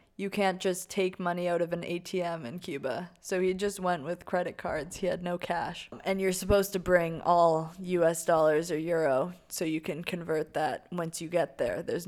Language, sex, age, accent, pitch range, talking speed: English, female, 20-39, American, 170-185 Hz, 210 wpm